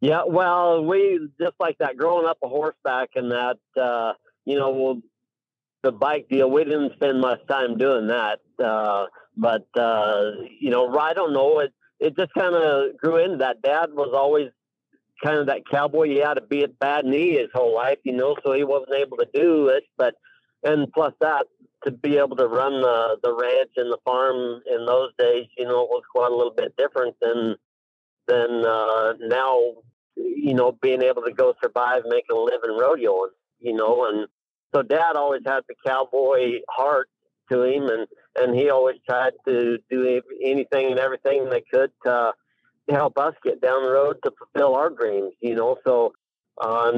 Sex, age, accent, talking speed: male, 50-69, American, 195 wpm